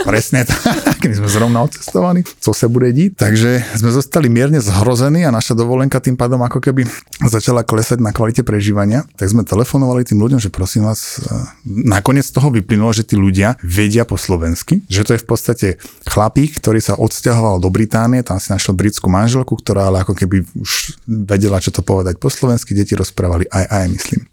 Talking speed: 190 wpm